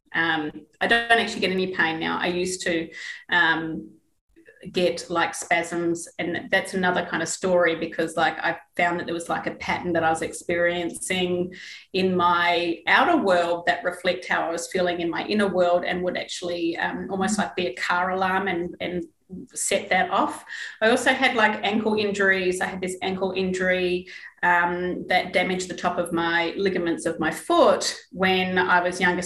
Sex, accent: female, Australian